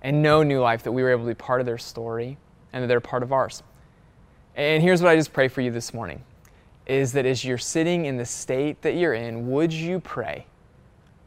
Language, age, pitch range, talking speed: English, 20-39, 115-145 Hz, 235 wpm